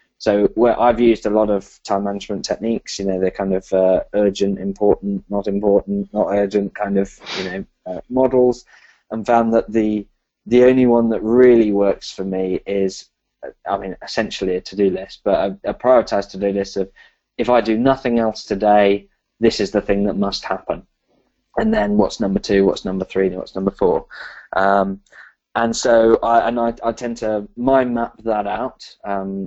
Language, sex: English, male